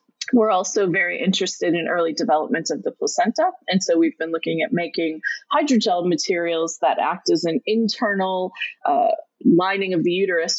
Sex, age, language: female, 20-39, English